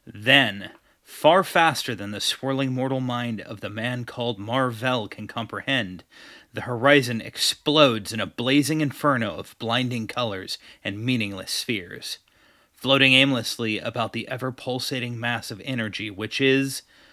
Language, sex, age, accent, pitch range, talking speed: English, male, 30-49, American, 110-135 Hz, 135 wpm